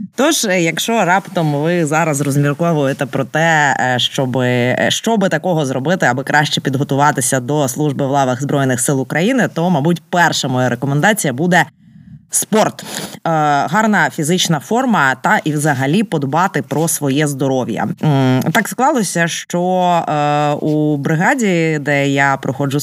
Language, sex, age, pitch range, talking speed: Ukrainian, female, 20-39, 145-190 Hz, 125 wpm